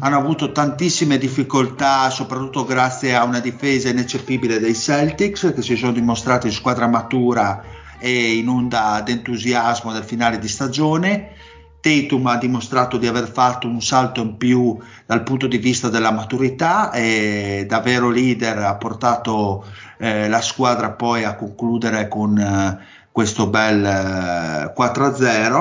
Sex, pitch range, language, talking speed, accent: male, 110-130 Hz, Italian, 140 wpm, native